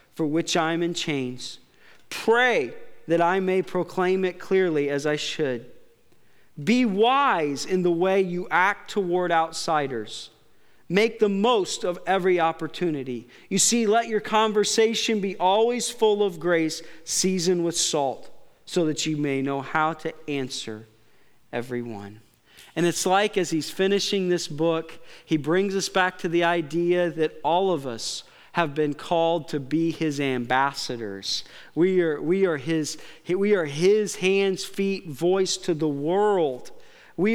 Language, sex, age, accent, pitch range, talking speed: English, male, 40-59, American, 145-195 Hz, 145 wpm